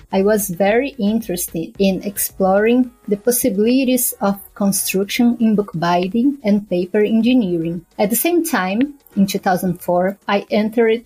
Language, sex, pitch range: English, female, 190-230 Hz